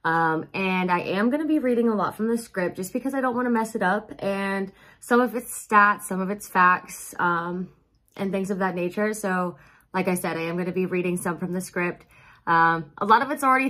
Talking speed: 250 wpm